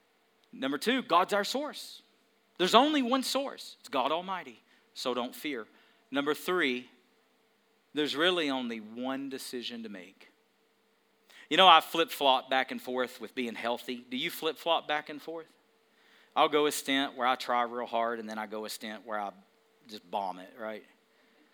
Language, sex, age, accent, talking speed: English, male, 40-59, American, 170 wpm